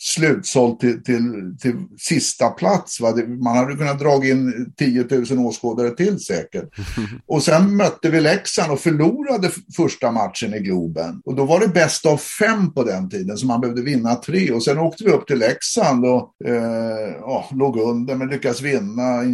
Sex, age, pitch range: male, 60-79, 120-165 Hz